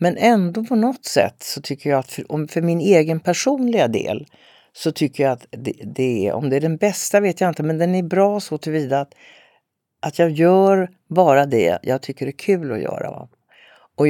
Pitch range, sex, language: 145-185 Hz, female, Swedish